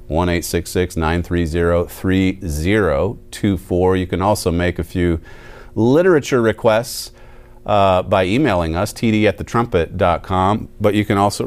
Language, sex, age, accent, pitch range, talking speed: English, male, 40-59, American, 80-105 Hz, 95 wpm